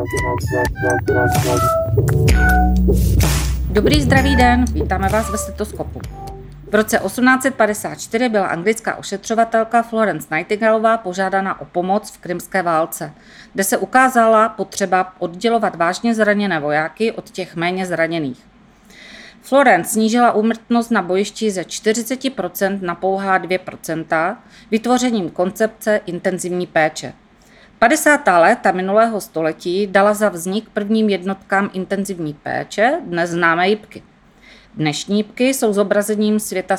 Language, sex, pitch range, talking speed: Czech, female, 165-220 Hz, 110 wpm